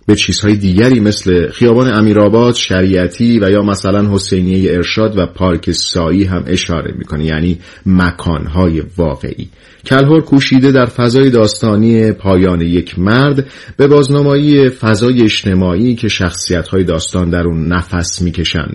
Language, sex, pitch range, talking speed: Persian, male, 90-120 Hz, 130 wpm